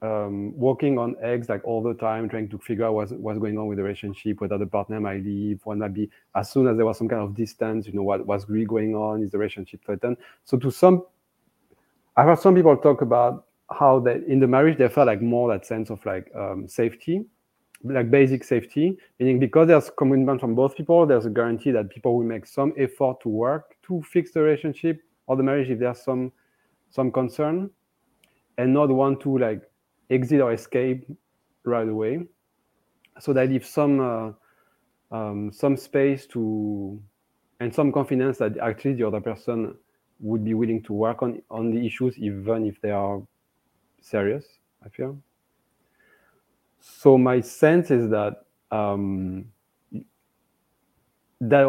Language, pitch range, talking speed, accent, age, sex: English, 110-135 Hz, 180 wpm, French, 30-49, male